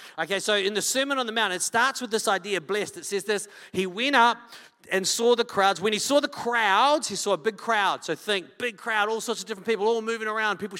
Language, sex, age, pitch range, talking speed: English, male, 40-59, 180-225 Hz, 260 wpm